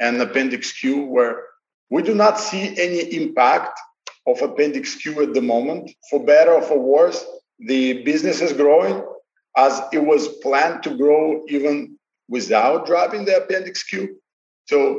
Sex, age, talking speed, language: male, 50-69, 150 wpm, English